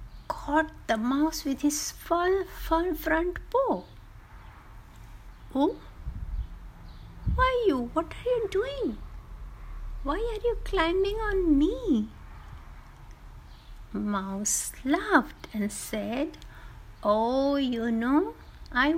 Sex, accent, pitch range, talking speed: female, native, 205-325 Hz, 95 wpm